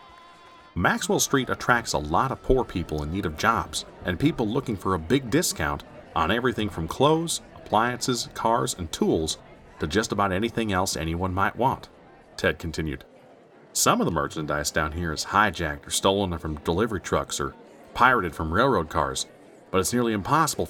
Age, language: 40-59, English